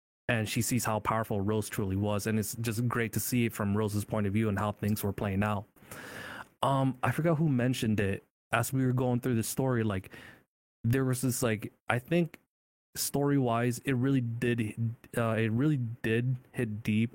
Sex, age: male, 20-39